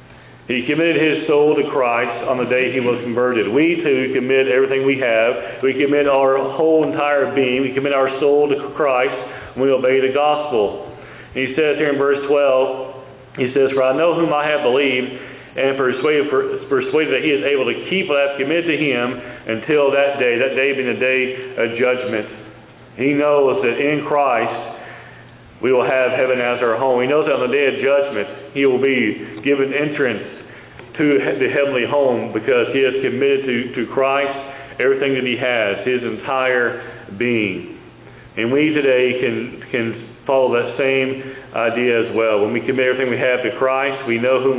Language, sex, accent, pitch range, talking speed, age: English, male, American, 125-145 Hz, 190 wpm, 40-59